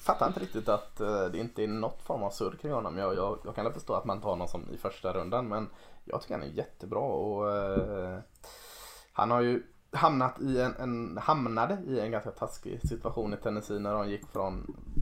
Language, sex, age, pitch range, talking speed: Swedish, male, 20-39, 105-130 Hz, 215 wpm